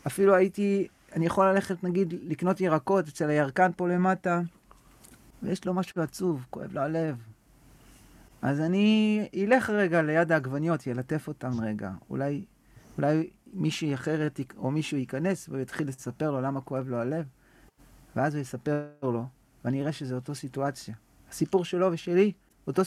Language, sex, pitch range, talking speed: Hebrew, male, 140-185 Hz, 145 wpm